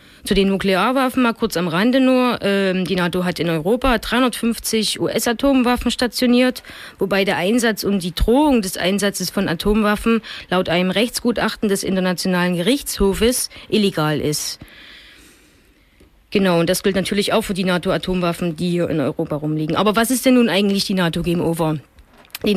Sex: female